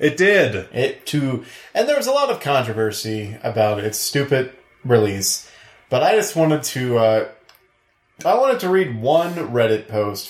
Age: 20-39